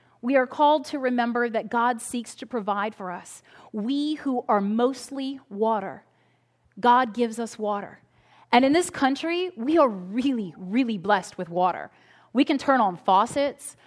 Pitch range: 235-290 Hz